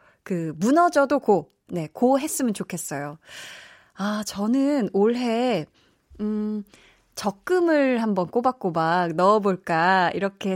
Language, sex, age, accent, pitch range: Korean, female, 20-39, native, 175-250 Hz